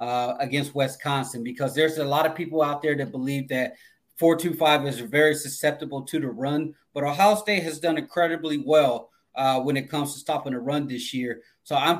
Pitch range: 140-155 Hz